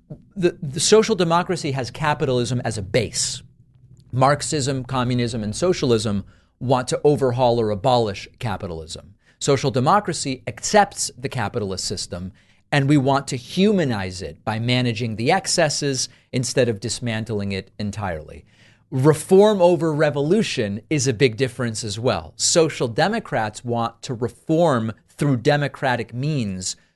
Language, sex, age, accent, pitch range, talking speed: English, male, 40-59, American, 110-145 Hz, 125 wpm